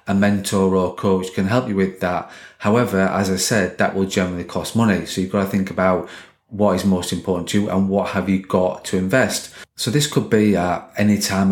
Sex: male